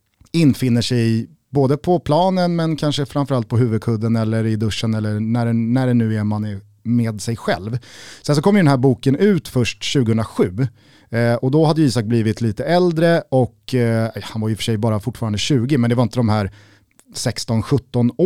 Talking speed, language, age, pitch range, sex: 195 wpm, Swedish, 30-49, 110-140 Hz, male